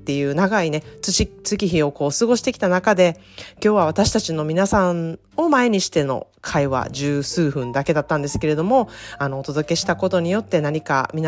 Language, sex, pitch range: Japanese, female, 155-200 Hz